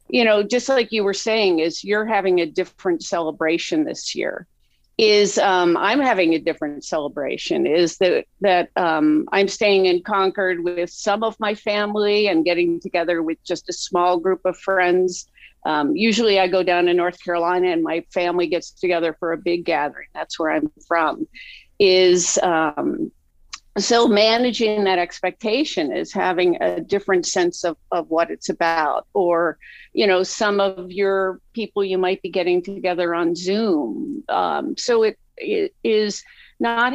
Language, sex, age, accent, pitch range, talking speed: English, female, 50-69, American, 175-220 Hz, 165 wpm